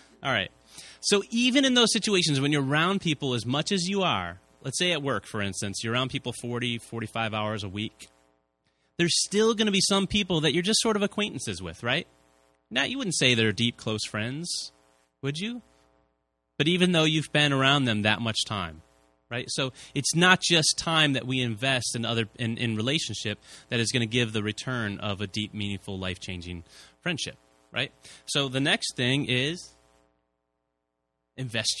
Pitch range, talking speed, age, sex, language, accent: 90-145 Hz, 185 wpm, 30-49, male, English, American